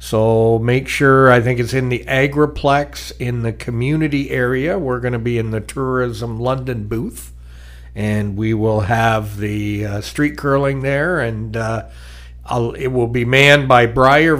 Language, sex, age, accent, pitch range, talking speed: English, male, 60-79, American, 105-130 Hz, 165 wpm